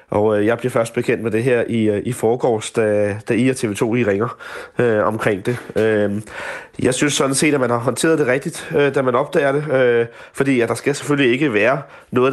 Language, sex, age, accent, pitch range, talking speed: Danish, male, 30-49, native, 110-130 Hz, 225 wpm